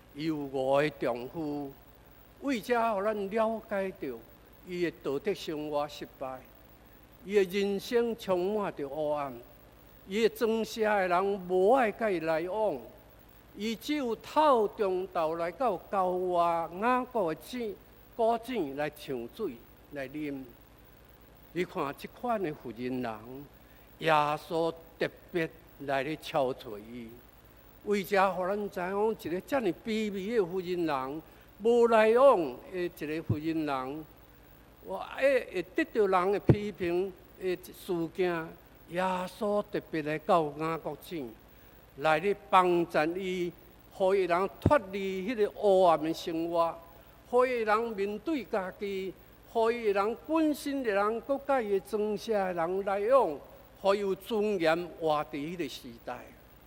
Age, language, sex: 50-69, Chinese, male